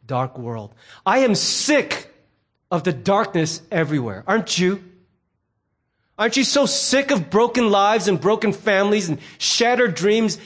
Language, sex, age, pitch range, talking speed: English, male, 30-49, 150-220 Hz, 140 wpm